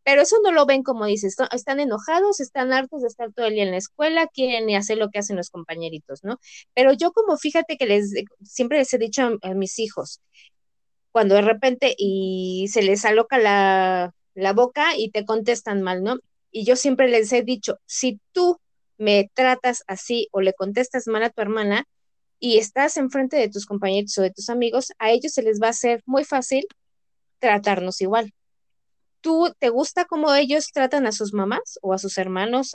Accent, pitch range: Mexican, 205-280 Hz